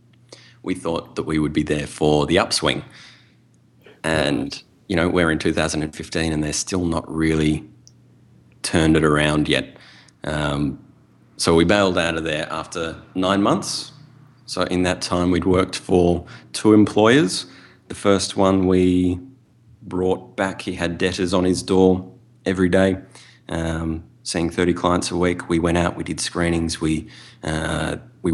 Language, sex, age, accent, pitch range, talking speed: English, male, 30-49, Australian, 80-100 Hz, 150 wpm